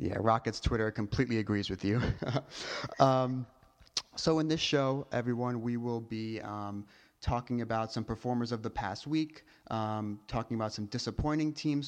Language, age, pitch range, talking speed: English, 30-49, 105-120 Hz, 155 wpm